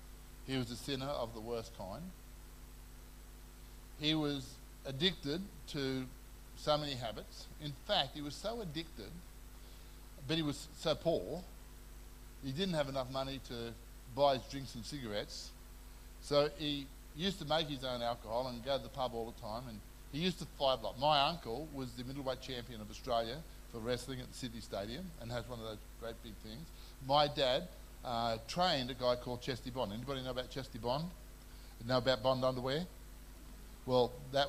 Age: 50-69